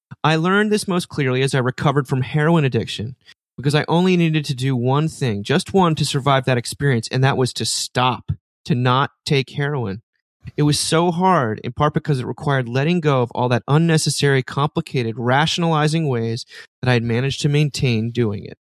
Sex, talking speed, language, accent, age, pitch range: male, 190 wpm, English, American, 30-49, 120-150 Hz